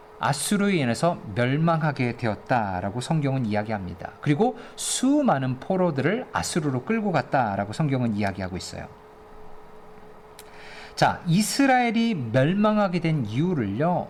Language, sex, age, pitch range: Korean, male, 40-59, 130-195 Hz